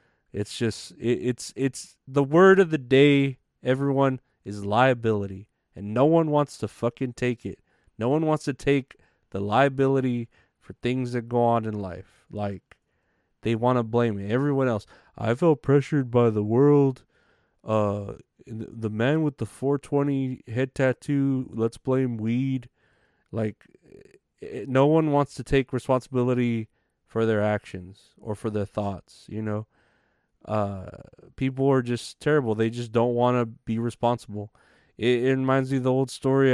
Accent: American